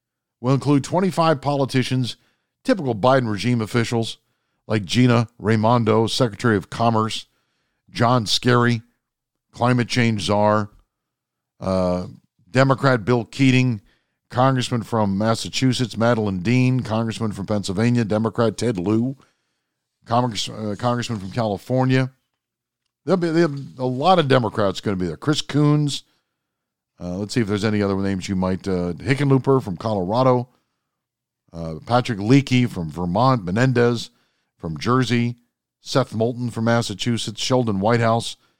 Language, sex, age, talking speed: English, male, 50-69, 125 wpm